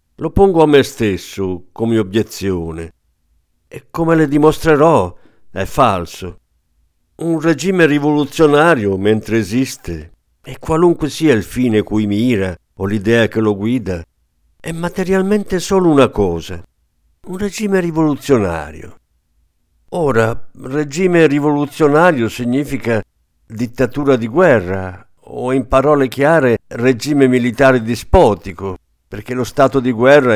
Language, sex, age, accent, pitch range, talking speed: Italian, male, 50-69, native, 95-140 Hz, 115 wpm